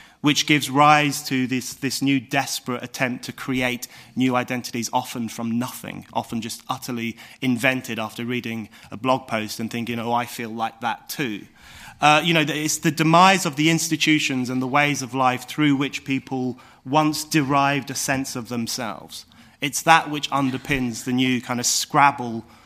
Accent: British